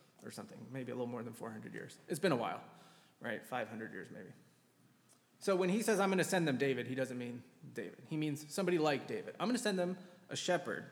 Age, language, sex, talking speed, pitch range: 30-49, English, male, 235 wpm, 125-170 Hz